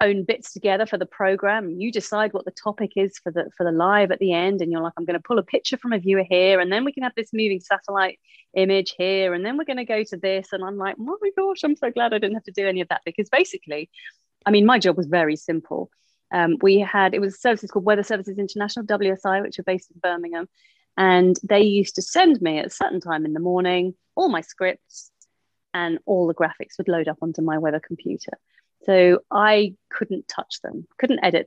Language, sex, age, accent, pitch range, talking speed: English, female, 30-49, British, 175-205 Hz, 240 wpm